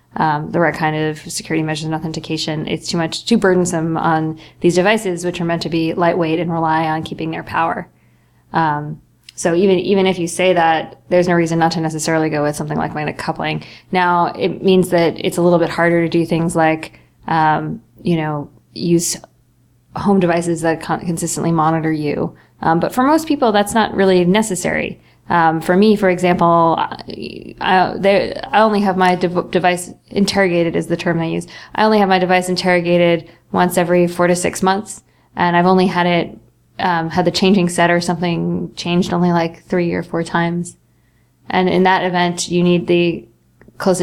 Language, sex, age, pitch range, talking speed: English, female, 20-39, 165-180 Hz, 190 wpm